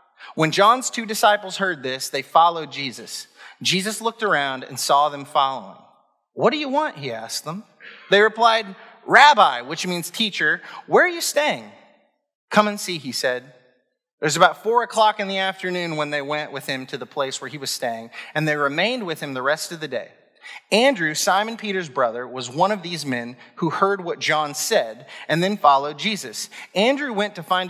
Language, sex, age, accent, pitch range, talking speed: English, male, 30-49, American, 140-205 Hz, 195 wpm